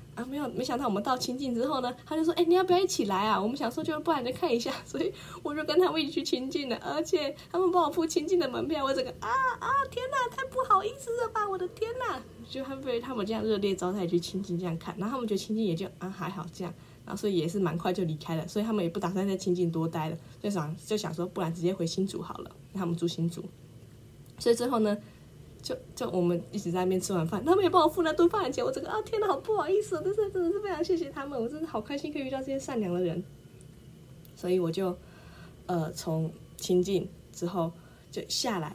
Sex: female